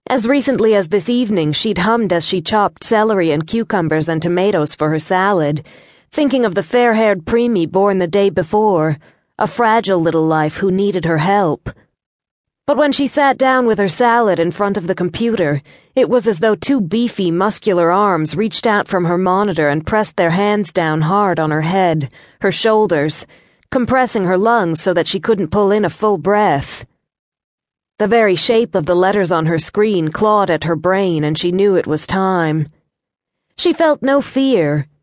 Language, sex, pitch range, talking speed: English, female, 165-220 Hz, 185 wpm